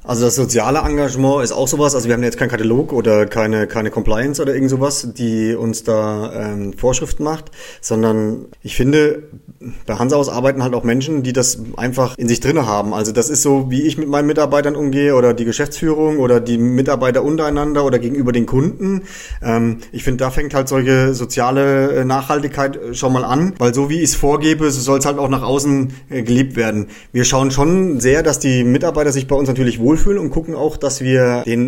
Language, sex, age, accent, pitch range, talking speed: German, male, 30-49, German, 120-140 Hz, 205 wpm